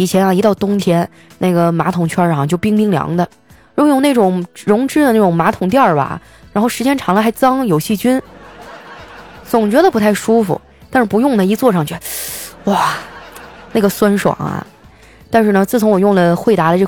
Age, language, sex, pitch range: 20-39, Chinese, female, 175-240 Hz